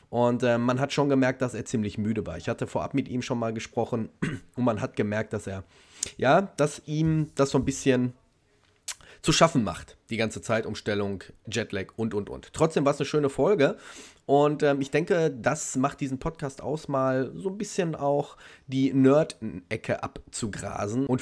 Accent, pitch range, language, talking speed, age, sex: German, 105-135 Hz, German, 190 wpm, 30-49, male